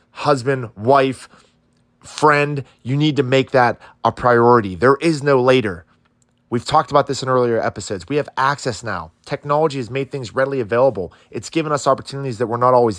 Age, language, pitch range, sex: 30-49, English, 110-145 Hz, male